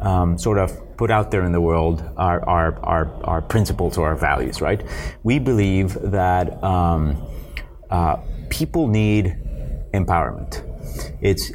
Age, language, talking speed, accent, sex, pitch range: 30-49, English, 135 wpm, American, male, 85-100 Hz